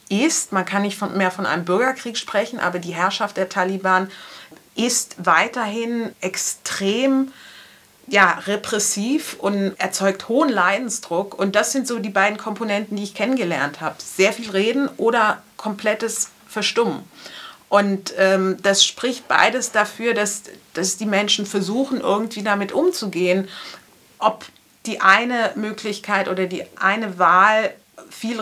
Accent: German